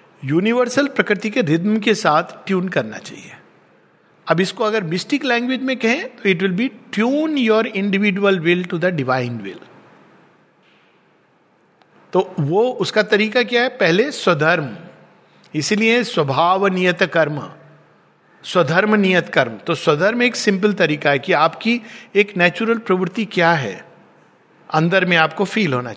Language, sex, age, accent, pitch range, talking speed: Hindi, male, 50-69, native, 175-235 Hz, 140 wpm